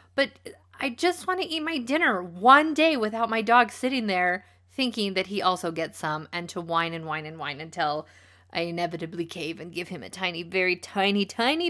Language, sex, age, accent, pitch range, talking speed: English, female, 30-49, American, 180-255 Hz, 205 wpm